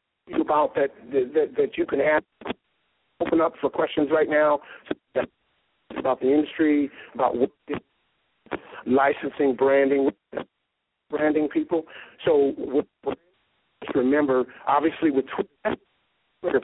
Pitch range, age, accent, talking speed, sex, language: 135-205 Hz, 50-69, American, 90 wpm, male, English